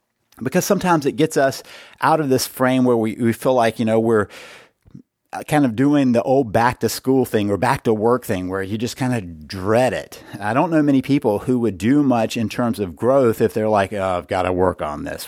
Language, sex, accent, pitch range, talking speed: English, male, American, 115-140 Hz, 240 wpm